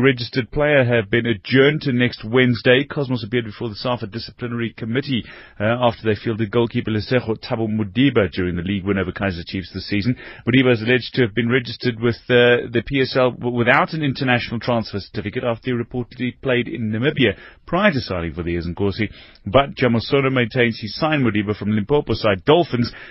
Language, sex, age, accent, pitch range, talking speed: English, male, 30-49, British, 105-130 Hz, 185 wpm